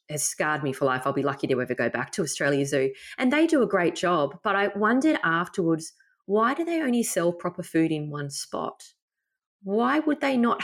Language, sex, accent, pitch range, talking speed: English, female, Australian, 160-215 Hz, 220 wpm